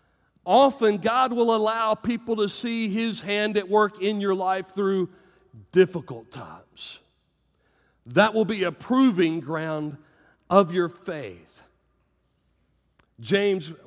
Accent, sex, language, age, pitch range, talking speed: American, male, English, 40-59, 180-225 Hz, 115 wpm